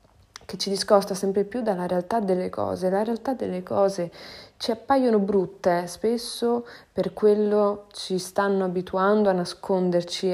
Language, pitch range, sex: Italian, 180-215 Hz, female